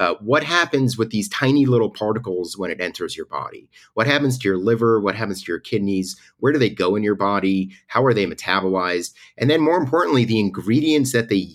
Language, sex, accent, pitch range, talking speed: Hebrew, male, American, 95-140 Hz, 220 wpm